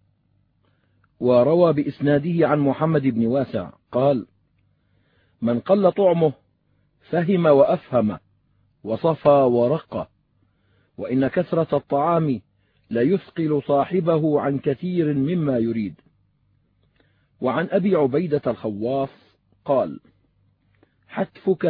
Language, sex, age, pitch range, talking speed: Arabic, male, 50-69, 115-170 Hz, 80 wpm